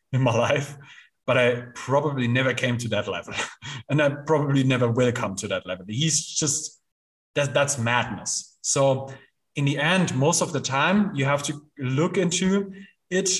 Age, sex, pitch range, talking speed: 30-49, male, 135-200 Hz, 175 wpm